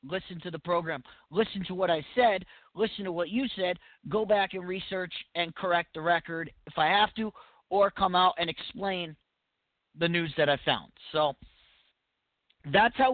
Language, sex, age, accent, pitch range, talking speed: English, male, 40-59, American, 155-210 Hz, 180 wpm